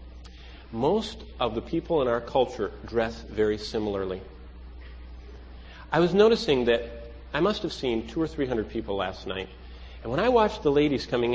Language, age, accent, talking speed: English, 40-59, American, 170 wpm